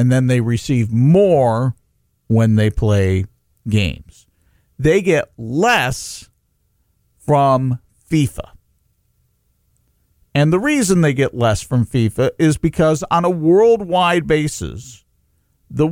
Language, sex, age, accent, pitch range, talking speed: English, male, 50-69, American, 105-160 Hz, 110 wpm